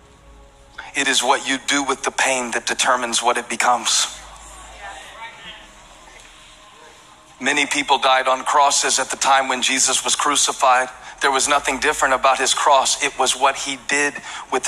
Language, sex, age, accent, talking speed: English, male, 40-59, American, 155 wpm